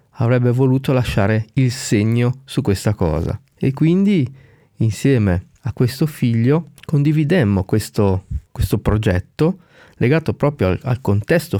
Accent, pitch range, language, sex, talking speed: native, 105-135 Hz, Italian, male, 120 wpm